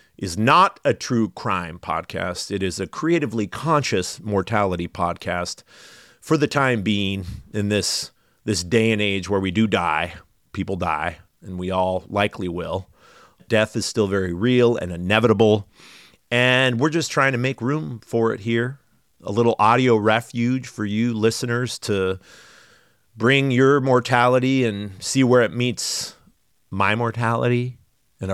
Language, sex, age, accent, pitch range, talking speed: English, male, 30-49, American, 95-120 Hz, 150 wpm